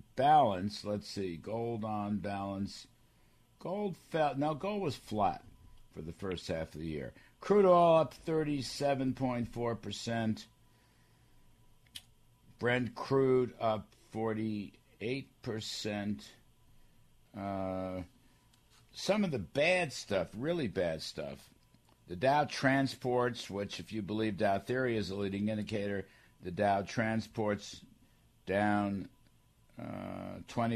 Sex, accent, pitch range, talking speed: male, American, 100-125 Hz, 115 wpm